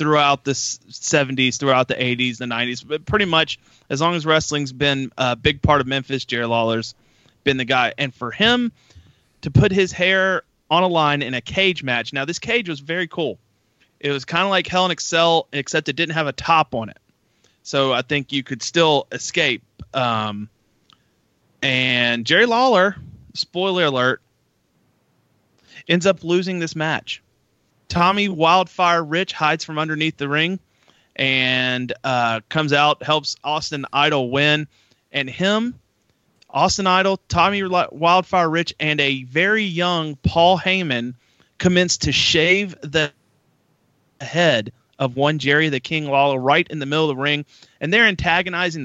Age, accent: 30-49, American